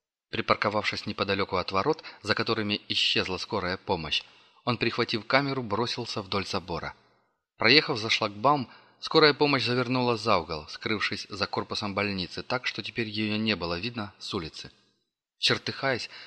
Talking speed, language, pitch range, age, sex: 135 wpm, Russian, 100-120 Hz, 30-49, male